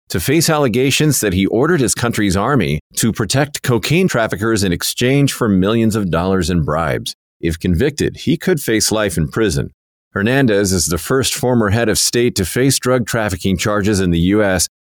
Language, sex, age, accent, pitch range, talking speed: English, male, 40-59, American, 85-115 Hz, 180 wpm